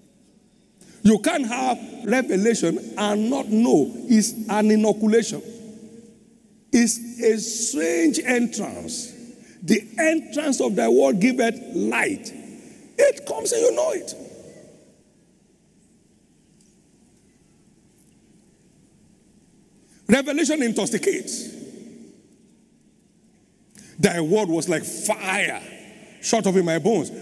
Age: 50-69